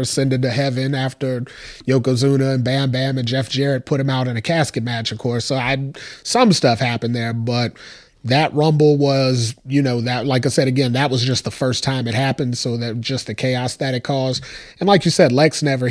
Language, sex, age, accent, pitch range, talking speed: English, male, 30-49, American, 120-145 Hz, 225 wpm